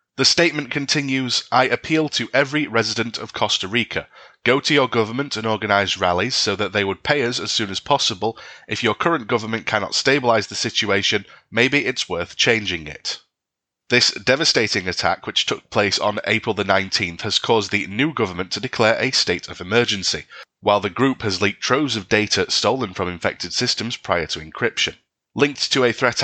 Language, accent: English, British